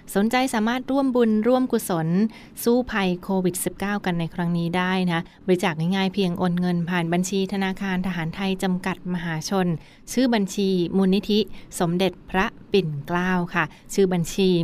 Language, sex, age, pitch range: Thai, female, 20-39, 175-195 Hz